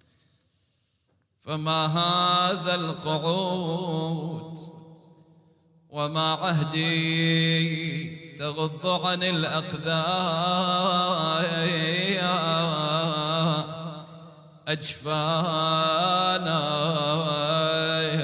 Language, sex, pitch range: Arabic, male, 155-180 Hz